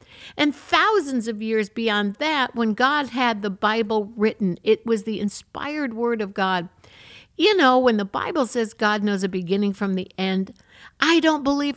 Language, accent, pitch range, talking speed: English, American, 185-255 Hz, 180 wpm